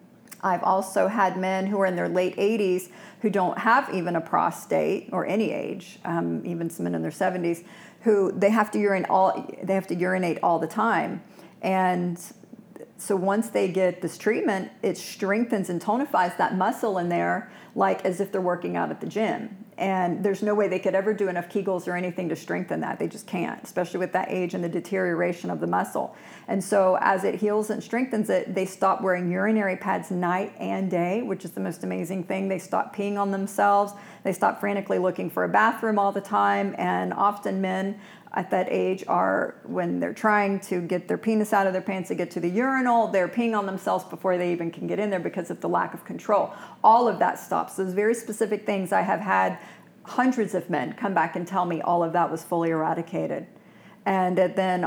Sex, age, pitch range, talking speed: female, 50-69, 180-205 Hz, 215 wpm